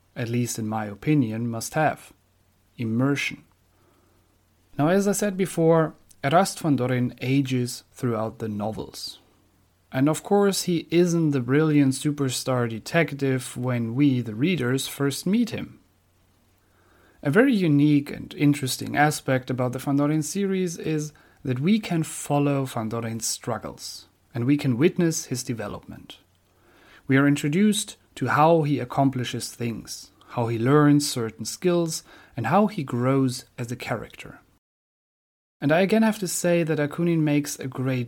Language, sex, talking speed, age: English, male, 145 wpm, 30-49